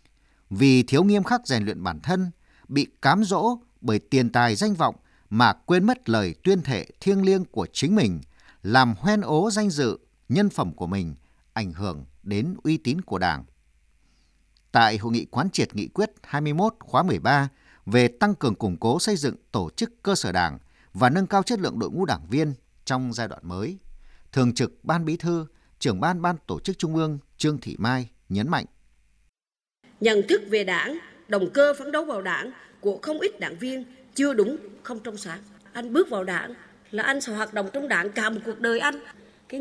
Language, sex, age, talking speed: Vietnamese, male, 50-69, 200 wpm